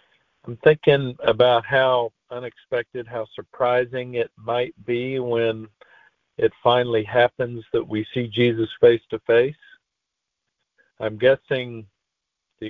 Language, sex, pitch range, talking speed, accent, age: English, male, 110-150 Hz, 105 wpm, American, 50-69